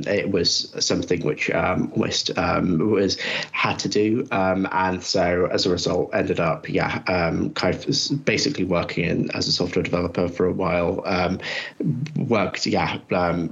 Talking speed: 165 wpm